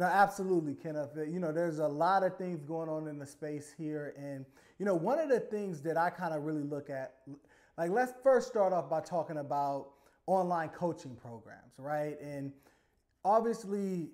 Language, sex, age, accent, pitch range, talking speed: English, male, 20-39, American, 150-195 Hz, 185 wpm